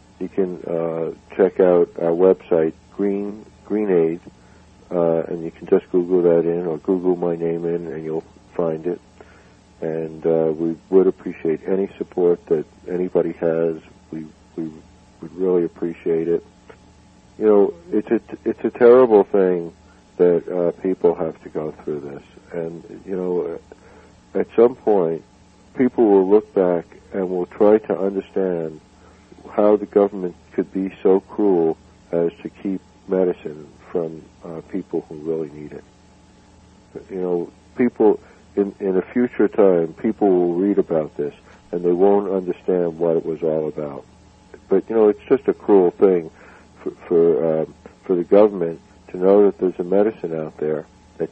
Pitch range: 80-95 Hz